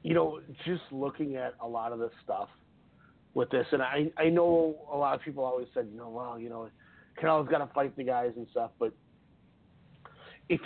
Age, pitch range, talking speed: 30-49, 135-170 Hz, 210 wpm